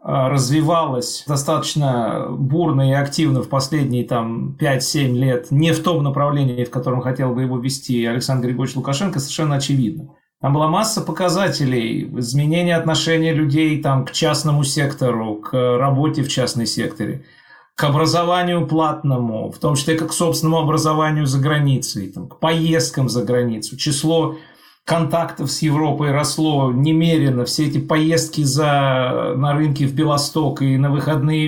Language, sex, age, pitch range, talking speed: Russian, male, 40-59, 135-160 Hz, 140 wpm